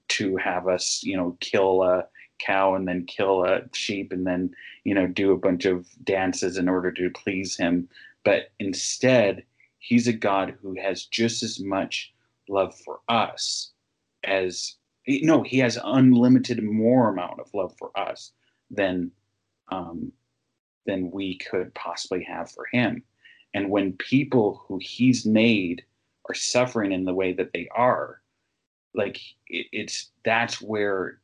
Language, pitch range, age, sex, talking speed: English, 90-115 Hz, 30-49, male, 155 wpm